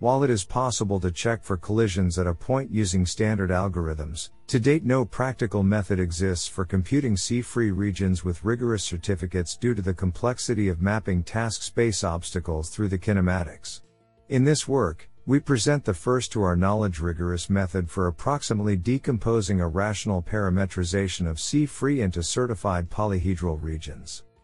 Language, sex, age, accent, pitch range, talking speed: English, male, 50-69, American, 90-115 Hz, 155 wpm